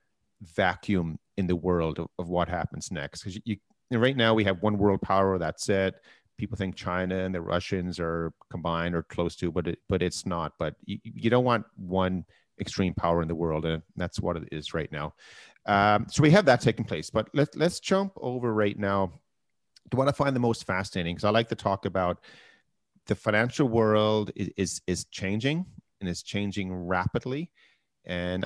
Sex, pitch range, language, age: male, 90-115 Hz, English, 40-59